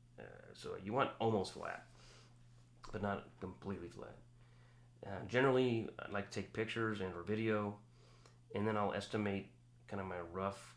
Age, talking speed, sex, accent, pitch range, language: 30-49, 155 wpm, male, American, 95-120 Hz, English